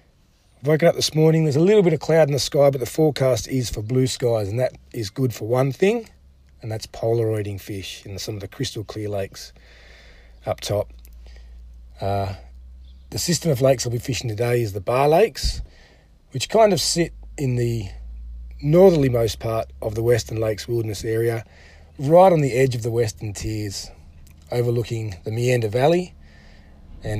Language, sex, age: English, male, 30-49